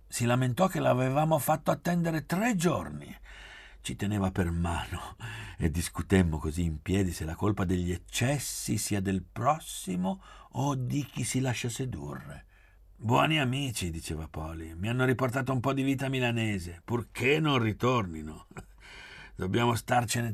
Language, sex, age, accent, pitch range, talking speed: Italian, male, 60-79, native, 90-130 Hz, 140 wpm